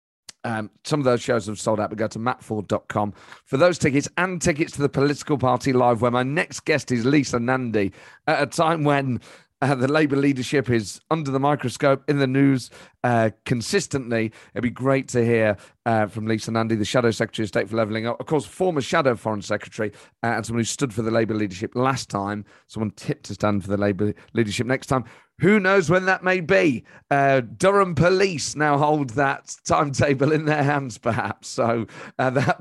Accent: British